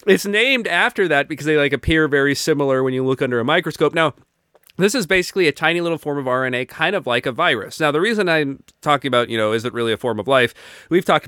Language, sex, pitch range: English, male, 120-155 Hz